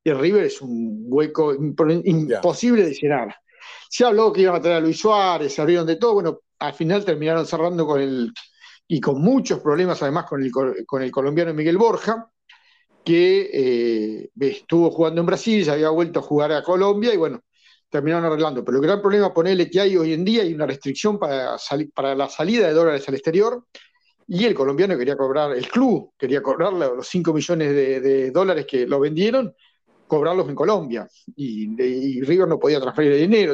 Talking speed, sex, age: 200 wpm, male, 50-69